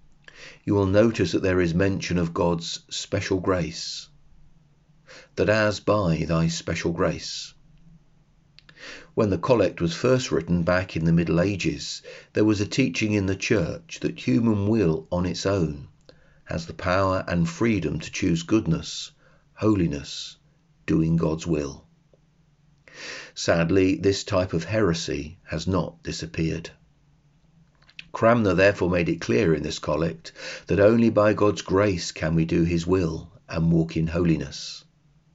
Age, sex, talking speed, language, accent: 40-59, male, 140 wpm, English, British